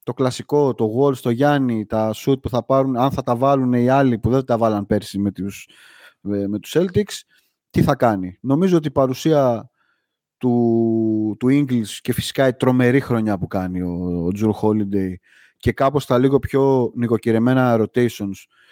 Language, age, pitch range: Greek, 30-49, 110-135 Hz